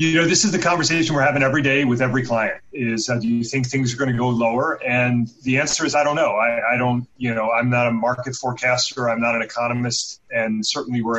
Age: 30-49